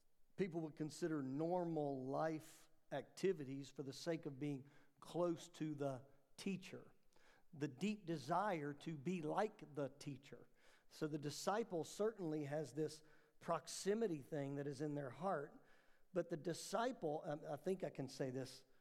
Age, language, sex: 50-69, English, male